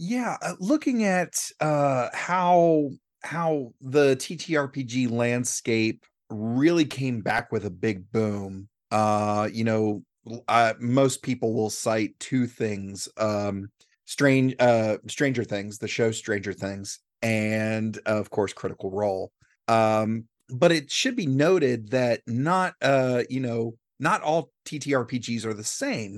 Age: 30-49